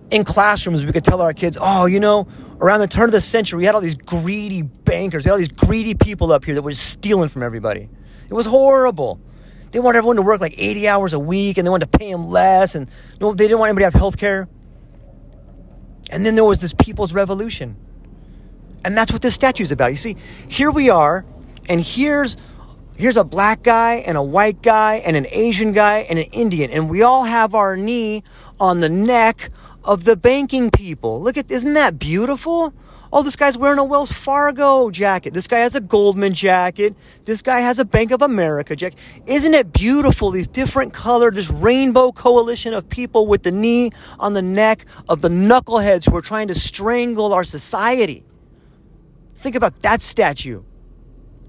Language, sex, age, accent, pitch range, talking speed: English, male, 30-49, American, 180-235 Hz, 200 wpm